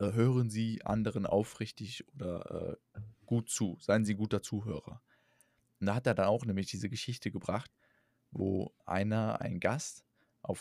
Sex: male